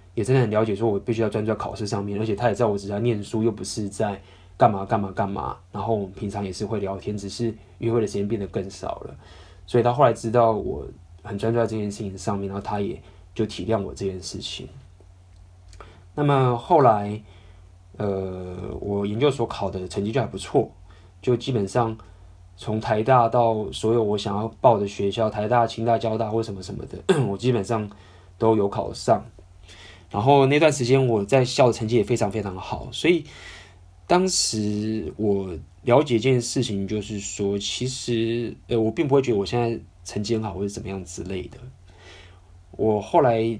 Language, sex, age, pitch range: Chinese, male, 20-39, 95-115 Hz